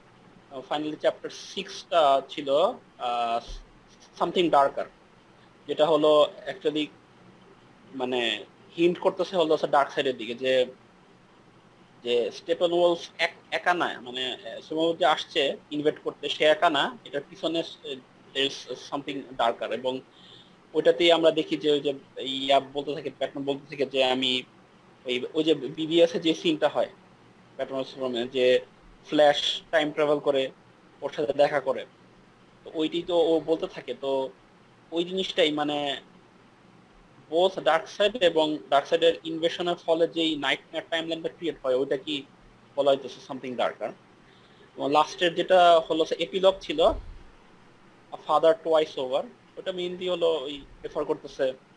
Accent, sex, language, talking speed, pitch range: native, male, Bengali, 35 wpm, 135-165 Hz